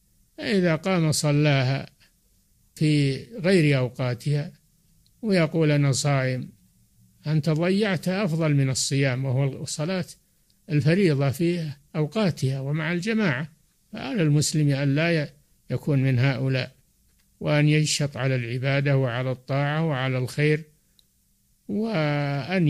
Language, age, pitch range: Arabic, 60-79, 135-160 Hz